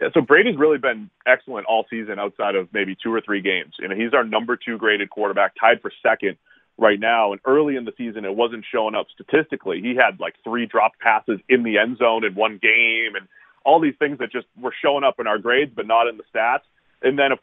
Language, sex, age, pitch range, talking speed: English, male, 30-49, 115-140 Hz, 245 wpm